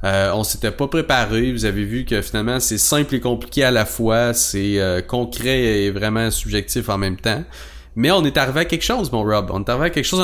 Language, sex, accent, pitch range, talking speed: English, male, Canadian, 100-130 Hz, 240 wpm